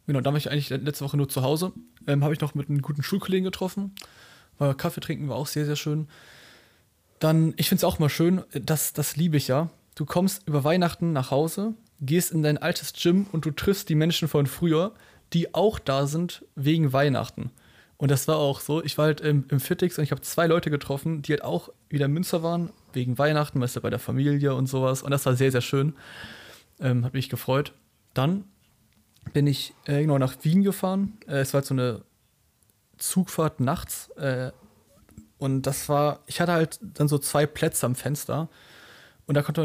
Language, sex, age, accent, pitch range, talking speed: German, male, 20-39, German, 135-160 Hz, 205 wpm